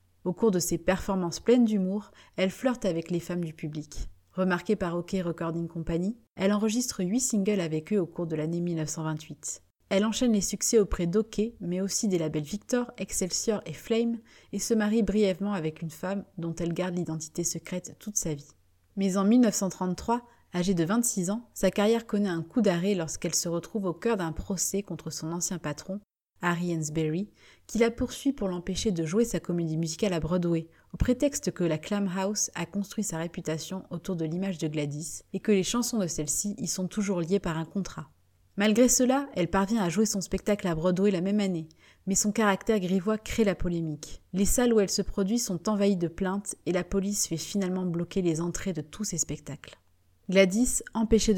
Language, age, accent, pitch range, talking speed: French, 30-49, French, 170-210 Hz, 195 wpm